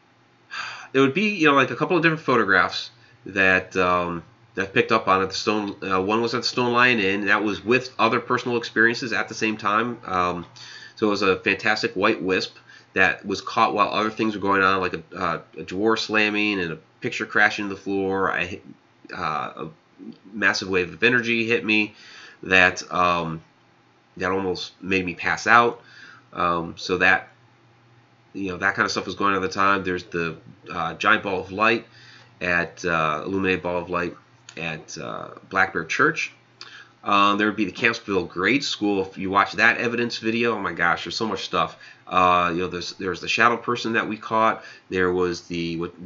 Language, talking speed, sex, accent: English, 205 wpm, male, American